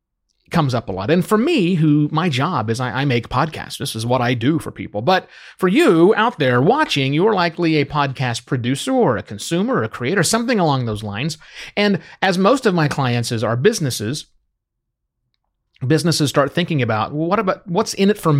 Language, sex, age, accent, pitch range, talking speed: English, male, 30-49, American, 120-175 Hz, 200 wpm